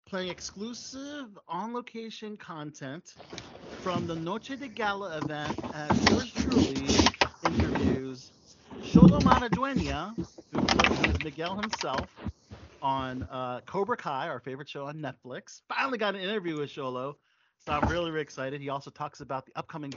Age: 40-59